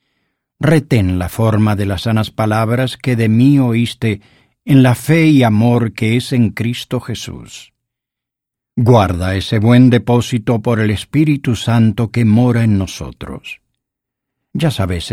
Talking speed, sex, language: 140 wpm, male, English